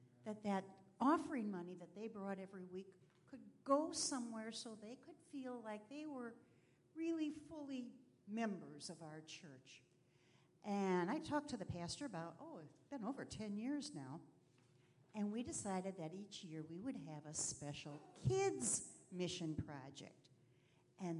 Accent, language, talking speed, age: American, English, 155 wpm, 60-79